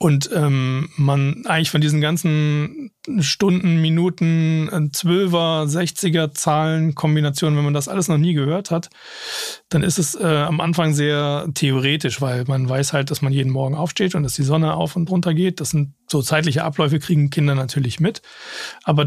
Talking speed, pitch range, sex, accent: 175 wpm, 140-165 Hz, male, German